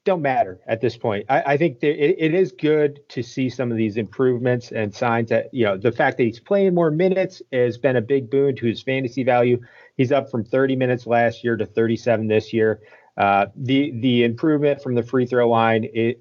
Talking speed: 225 wpm